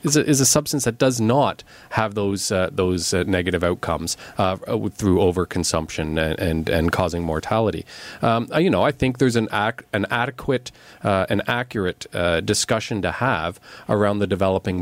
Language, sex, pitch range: English, male, 90-115 Hz